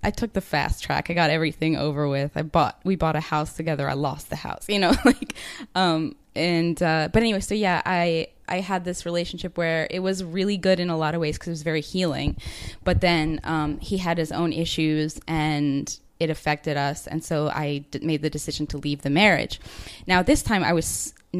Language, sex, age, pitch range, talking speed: English, female, 10-29, 155-180 Hz, 225 wpm